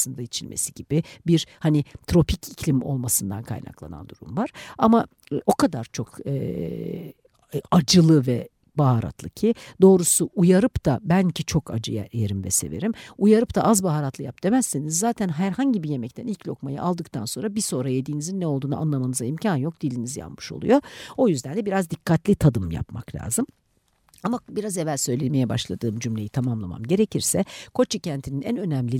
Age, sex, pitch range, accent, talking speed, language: 60-79, female, 130-190 Hz, native, 155 wpm, Turkish